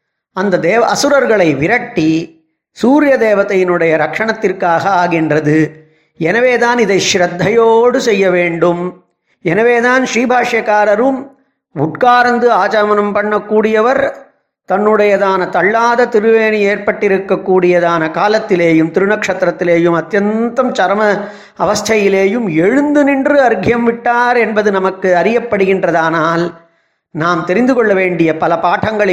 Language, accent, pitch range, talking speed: Tamil, native, 170-220 Hz, 85 wpm